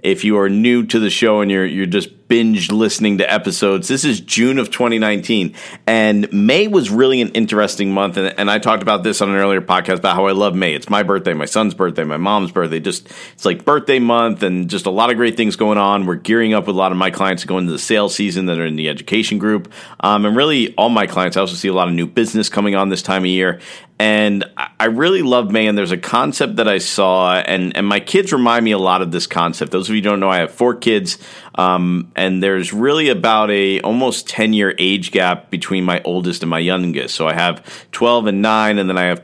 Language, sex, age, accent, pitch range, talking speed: English, male, 40-59, American, 95-110 Hz, 250 wpm